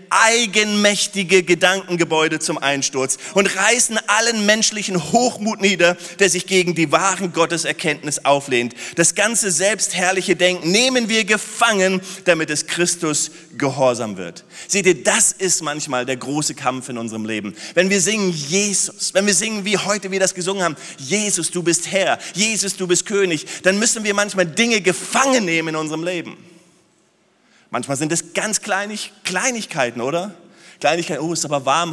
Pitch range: 165-210 Hz